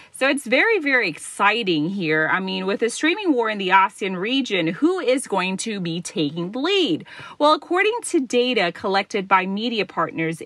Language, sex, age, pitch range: Thai, female, 30-49, 175-255 Hz